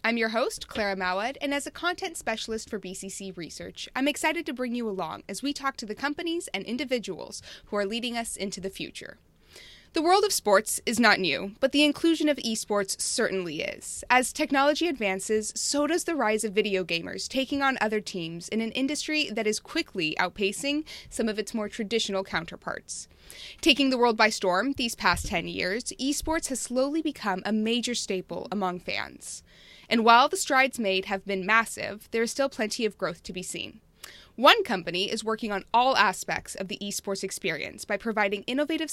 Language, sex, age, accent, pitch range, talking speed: English, female, 20-39, American, 195-275 Hz, 190 wpm